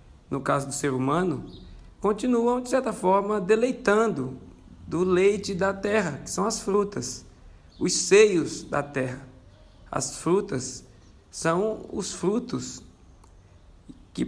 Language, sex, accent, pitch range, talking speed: Portuguese, male, Brazilian, 130-195 Hz, 120 wpm